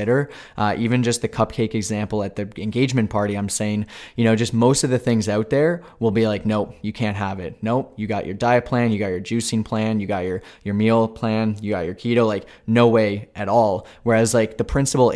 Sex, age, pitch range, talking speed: male, 20-39, 105-120 Hz, 235 wpm